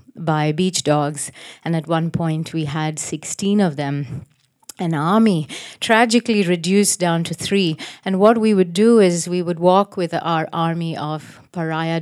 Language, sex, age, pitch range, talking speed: English, female, 30-49, 155-185 Hz, 165 wpm